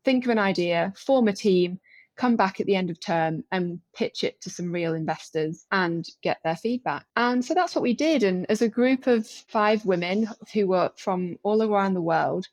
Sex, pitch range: female, 180-240 Hz